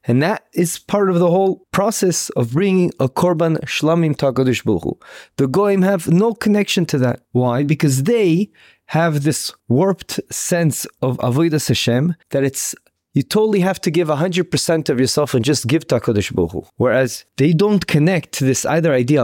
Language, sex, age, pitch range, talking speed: English, male, 30-49, 125-185 Hz, 170 wpm